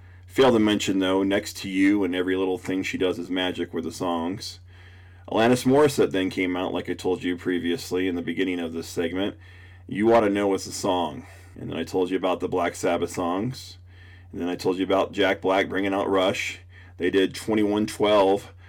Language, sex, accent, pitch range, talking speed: English, male, American, 90-105 Hz, 210 wpm